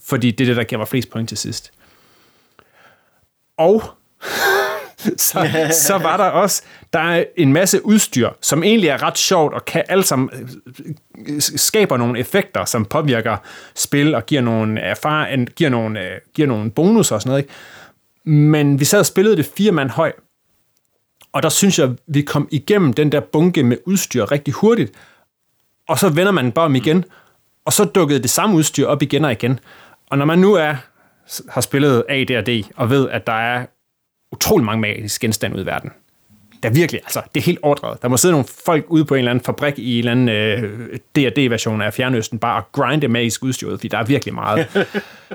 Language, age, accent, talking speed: Danish, 30-49, native, 190 wpm